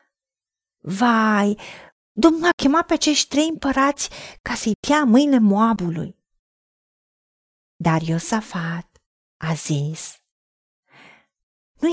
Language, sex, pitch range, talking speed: Romanian, female, 175-255 Hz, 85 wpm